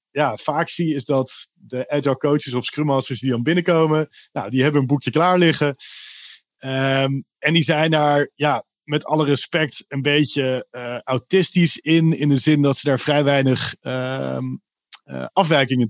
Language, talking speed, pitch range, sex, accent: Dutch, 175 wpm, 125-155 Hz, male, Dutch